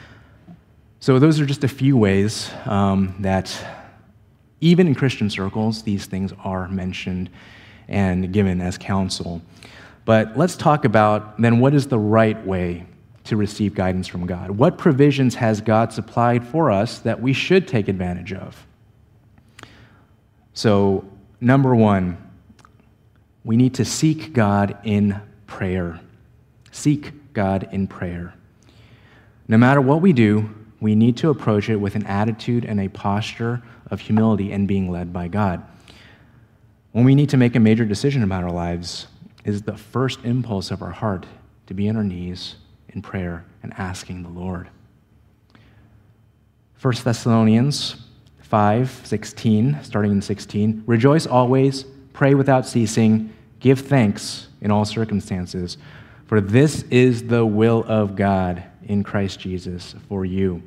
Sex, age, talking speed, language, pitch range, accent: male, 30-49, 140 wpm, English, 100-120 Hz, American